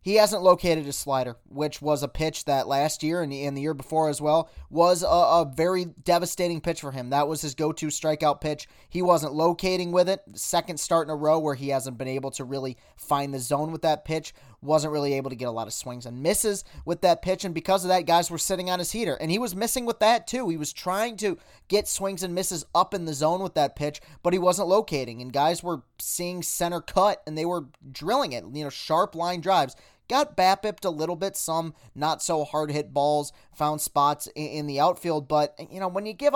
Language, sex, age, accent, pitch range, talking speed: English, male, 20-39, American, 145-185 Hz, 230 wpm